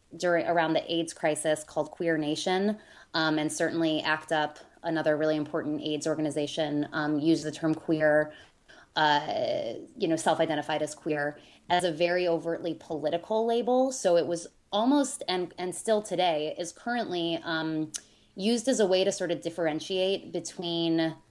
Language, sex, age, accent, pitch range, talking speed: English, female, 20-39, American, 155-185 Hz, 160 wpm